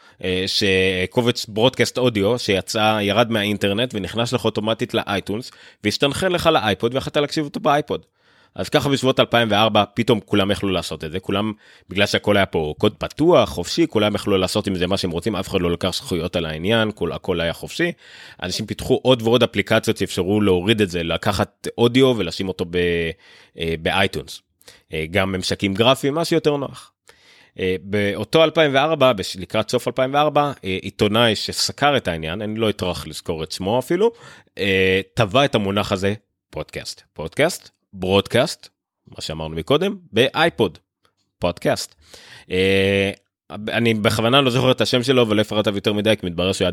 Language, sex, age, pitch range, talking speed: Hebrew, male, 30-49, 95-120 Hz, 140 wpm